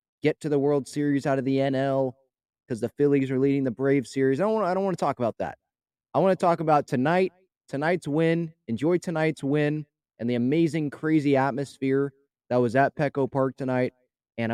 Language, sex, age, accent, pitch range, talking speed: English, male, 20-39, American, 125-155 Hz, 195 wpm